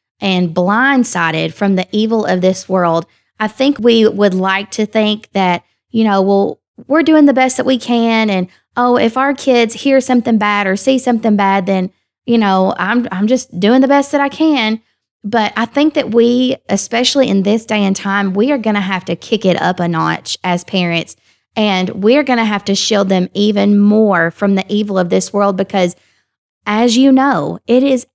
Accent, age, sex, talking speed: American, 20-39, female, 205 wpm